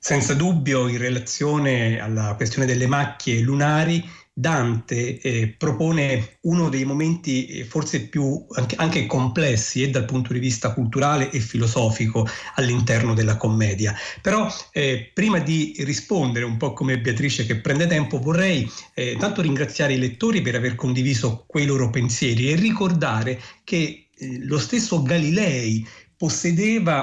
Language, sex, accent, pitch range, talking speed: Italian, male, native, 120-165 Hz, 140 wpm